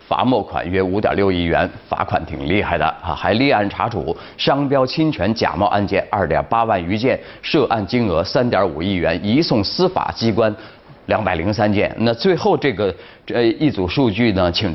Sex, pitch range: male, 85-120 Hz